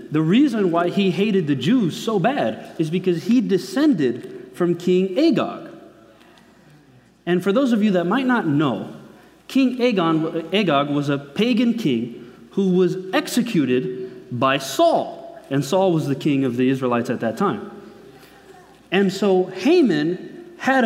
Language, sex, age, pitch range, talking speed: English, male, 30-49, 185-265 Hz, 145 wpm